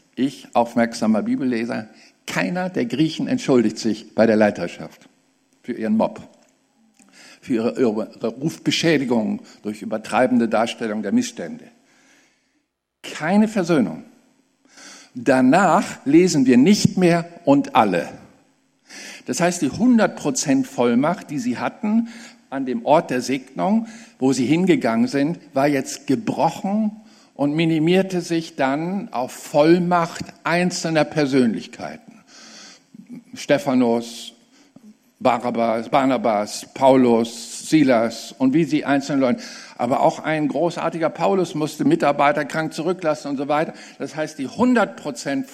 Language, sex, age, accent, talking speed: German, male, 60-79, German, 115 wpm